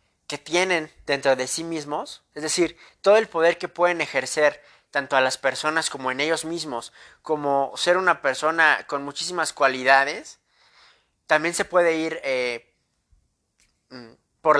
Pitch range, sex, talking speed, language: 135-175 Hz, male, 145 wpm, English